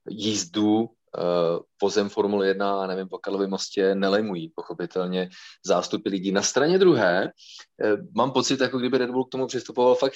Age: 30-49